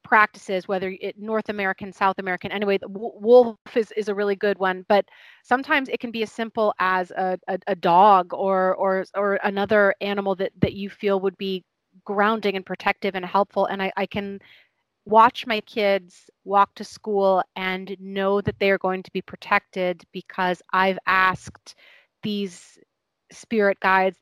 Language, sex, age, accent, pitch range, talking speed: English, female, 30-49, American, 190-215 Hz, 175 wpm